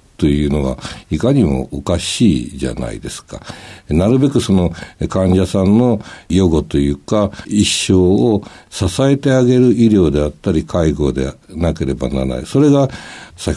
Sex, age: male, 60-79